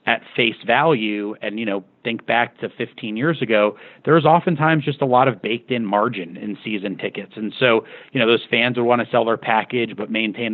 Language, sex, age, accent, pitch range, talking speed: English, male, 40-59, American, 105-120 Hz, 215 wpm